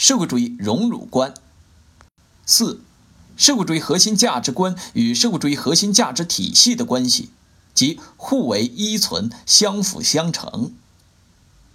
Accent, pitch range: native, 155-240 Hz